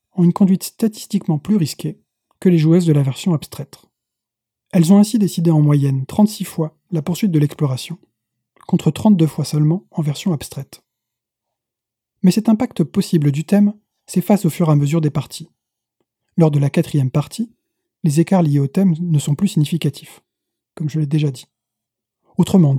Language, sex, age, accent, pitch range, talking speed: French, male, 20-39, French, 145-180 Hz, 175 wpm